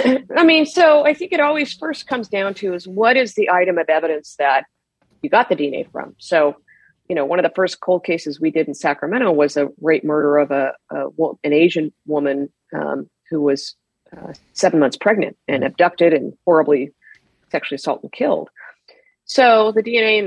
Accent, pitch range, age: American, 155-225 Hz, 40-59